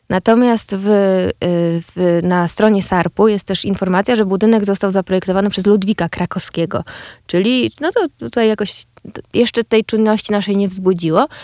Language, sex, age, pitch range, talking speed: Polish, female, 20-39, 175-220 Hz, 140 wpm